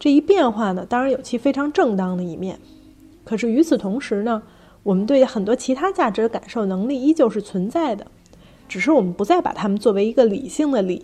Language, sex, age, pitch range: Chinese, female, 30-49, 210-275 Hz